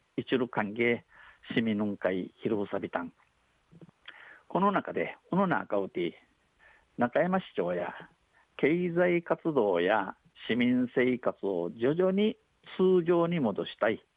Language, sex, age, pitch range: Japanese, male, 50-69, 110-170 Hz